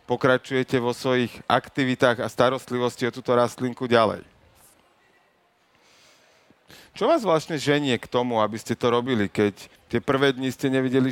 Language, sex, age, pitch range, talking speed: Slovak, male, 40-59, 120-140 Hz, 140 wpm